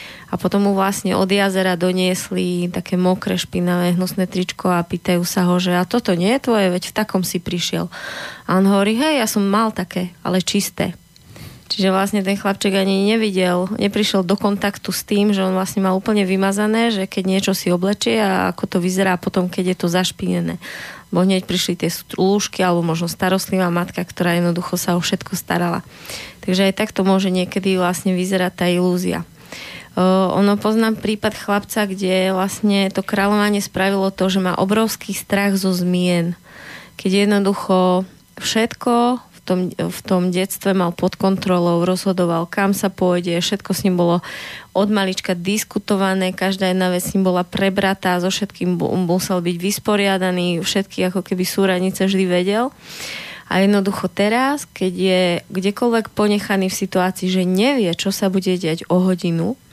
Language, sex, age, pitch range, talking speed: Slovak, female, 20-39, 180-200 Hz, 170 wpm